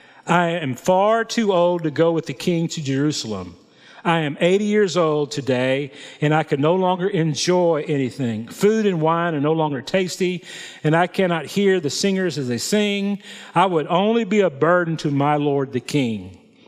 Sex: male